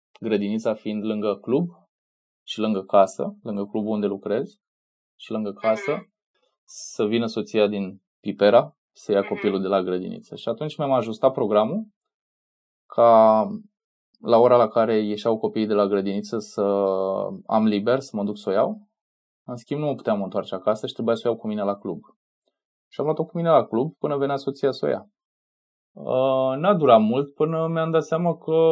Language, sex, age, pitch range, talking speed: Romanian, male, 20-39, 100-140 Hz, 180 wpm